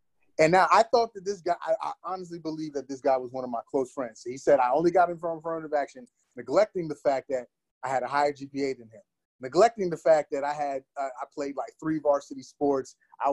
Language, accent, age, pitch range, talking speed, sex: English, American, 30-49, 135-160 Hz, 250 wpm, male